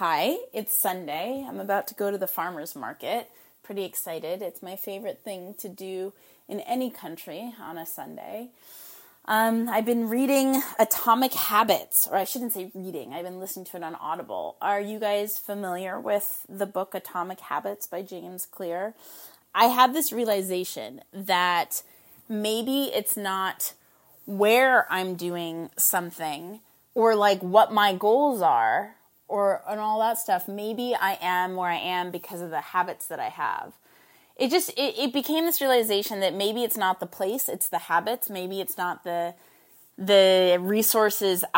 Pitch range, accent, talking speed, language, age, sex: 180-230 Hz, American, 165 wpm, English, 20-39, female